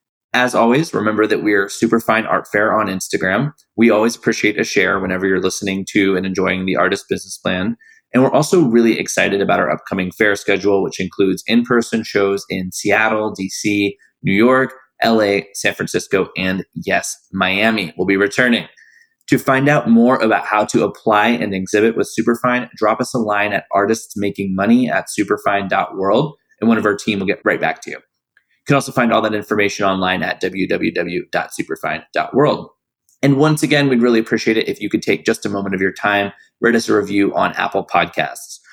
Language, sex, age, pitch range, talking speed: English, male, 20-39, 95-120 Hz, 185 wpm